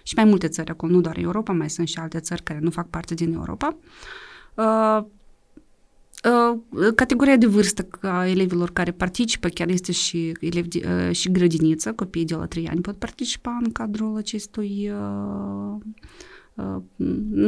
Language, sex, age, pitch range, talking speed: Romanian, female, 30-49, 170-220 Hz, 155 wpm